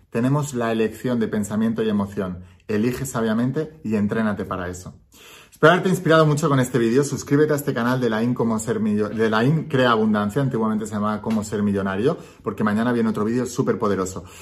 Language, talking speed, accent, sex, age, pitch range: Spanish, 200 wpm, Spanish, male, 30-49, 110-145 Hz